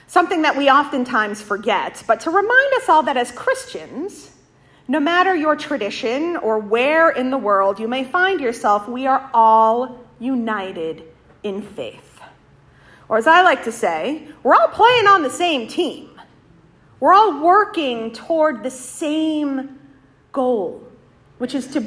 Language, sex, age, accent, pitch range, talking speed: English, female, 40-59, American, 225-315 Hz, 150 wpm